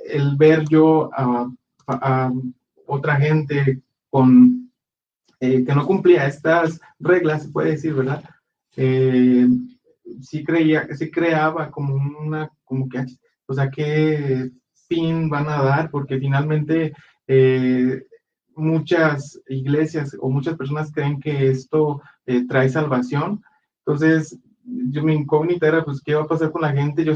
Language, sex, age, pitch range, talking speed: Spanish, male, 30-49, 130-155 Hz, 145 wpm